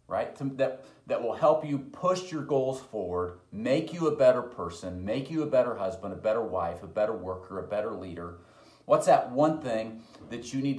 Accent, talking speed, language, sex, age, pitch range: American, 205 wpm, English, male, 40-59, 110-155 Hz